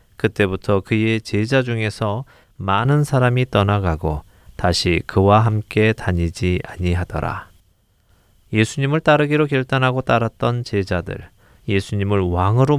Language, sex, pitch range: Korean, male, 95-125 Hz